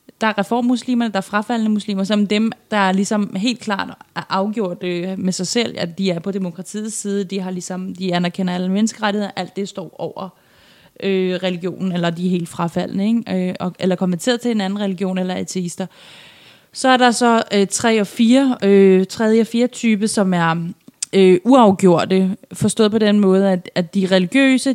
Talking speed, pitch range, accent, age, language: 175 wpm, 185-220 Hz, native, 20-39, Danish